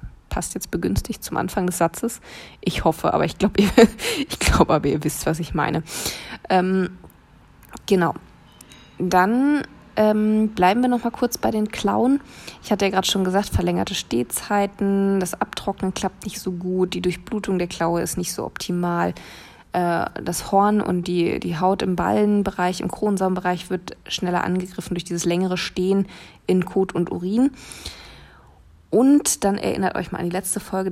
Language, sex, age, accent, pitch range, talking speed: German, female, 20-39, German, 175-200 Hz, 165 wpm